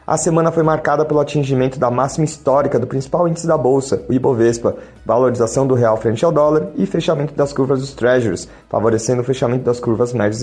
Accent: Brazilian